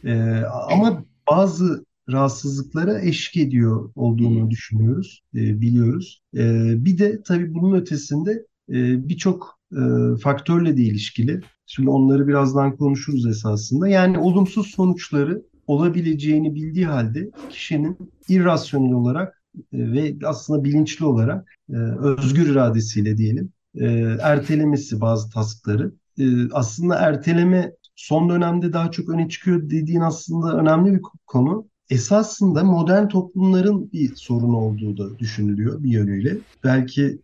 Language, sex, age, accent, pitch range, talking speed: Turkish, male, 50-69, native, 120-175 Hz, 120 wpm